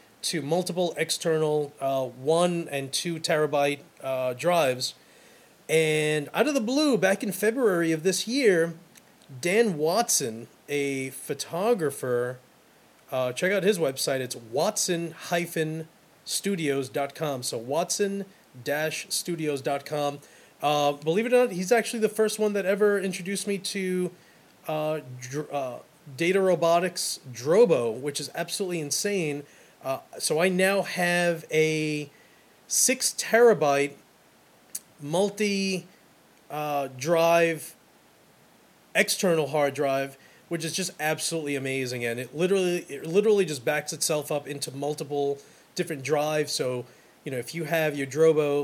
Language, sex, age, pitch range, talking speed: English, male, 30-49, 145-185 Hz, 120 wpm